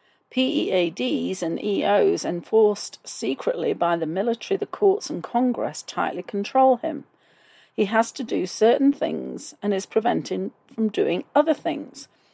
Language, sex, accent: English, female, British